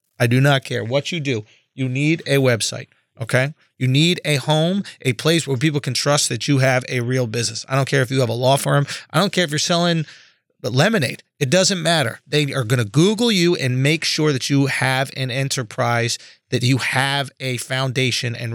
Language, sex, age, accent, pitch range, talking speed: English, male, 30-49, American, 125-150 Hz, 215 wpm